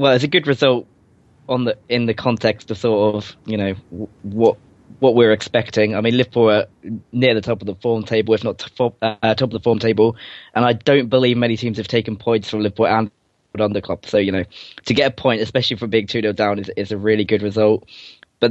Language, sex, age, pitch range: English, male, 20-39, 105-115 Hz